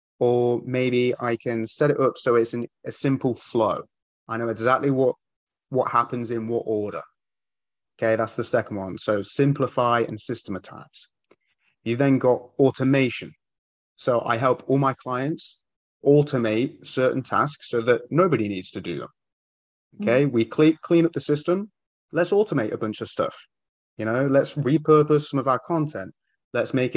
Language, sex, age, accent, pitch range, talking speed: English, male, 30-49, British, 115-140 Hz, 160 wpm